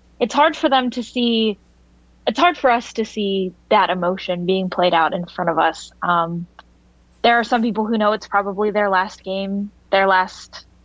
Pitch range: 180-235 Hz